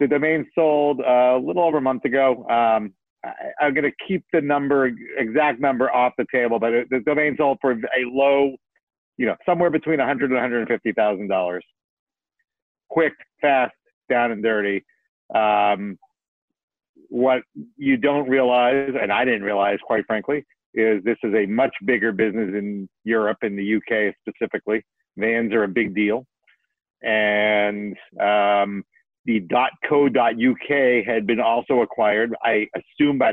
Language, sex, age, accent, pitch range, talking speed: English, male, 50-69, American, 105-135 Hz, 155 wpm